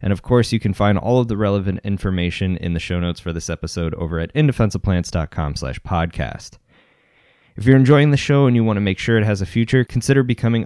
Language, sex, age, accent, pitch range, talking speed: English, male, 20-39, American, 85-110 Hz, 220 wpm